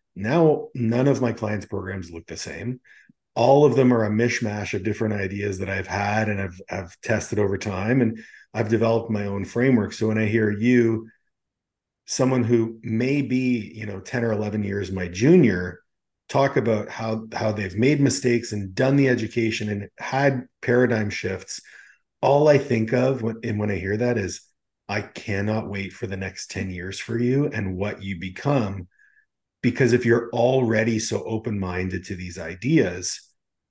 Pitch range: 100-120 Hz